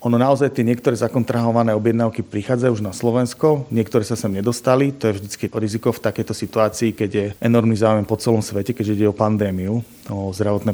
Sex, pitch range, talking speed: male, 105-120 Hz, 190 wpm